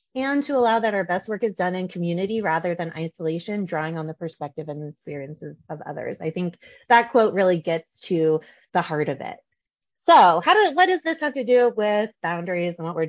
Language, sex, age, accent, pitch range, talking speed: English, female, 30-49, American, 175-235 Hz, 215 wpm